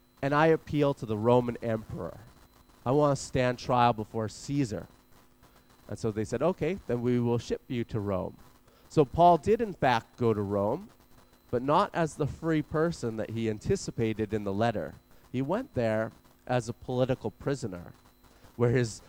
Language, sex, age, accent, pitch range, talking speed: English, male, 30-49, American, 110-145 Hz, 175 wpm